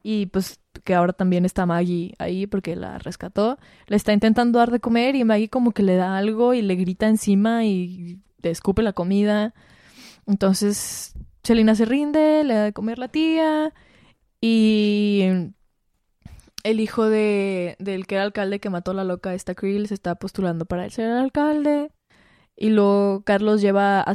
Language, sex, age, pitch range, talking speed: Spanish, female, 20-39, 195-230 Hz, 175 wpm